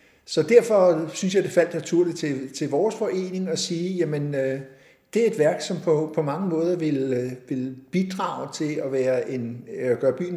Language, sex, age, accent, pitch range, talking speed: Danish, male, 60-79, native, 130-170 Hz, 190 wpm